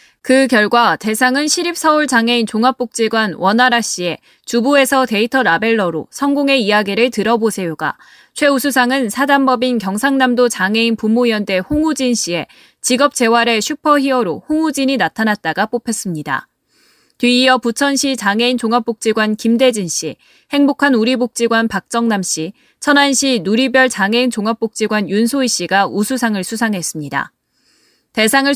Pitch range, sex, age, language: 210-260 Hz, female, 20-39, Korean